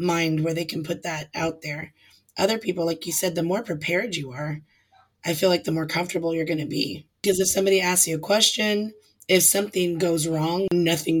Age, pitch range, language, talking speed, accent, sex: 20-39, 160-180 Hz, English, 215 wpm, American, female